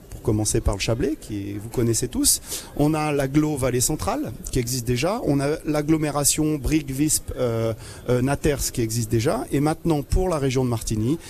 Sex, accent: male, French